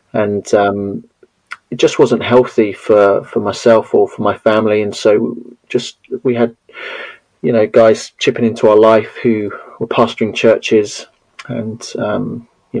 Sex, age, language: male, 20-39, English